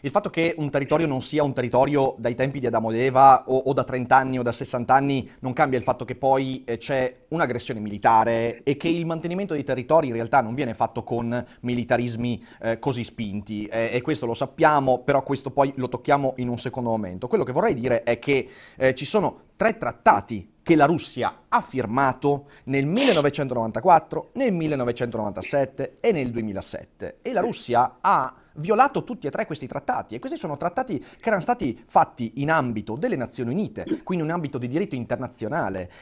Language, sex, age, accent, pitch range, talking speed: English, male, 30-49, Italian, 120-160 Hz, 195 wpm